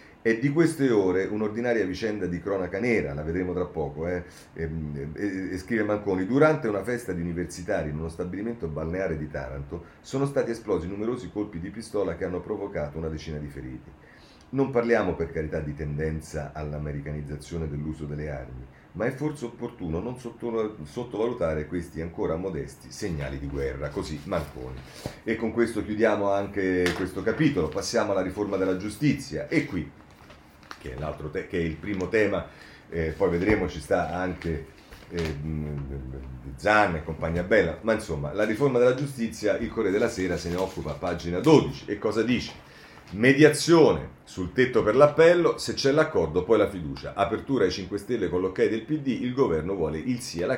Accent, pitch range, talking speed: native, 75-115 Hz, 170 wpm